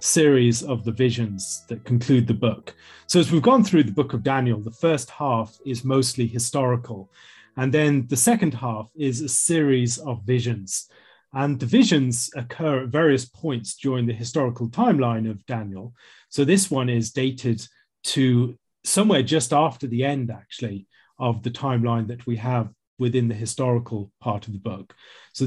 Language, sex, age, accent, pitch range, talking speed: English, male, 30-49, British, 115-140 Hz, 170 wpm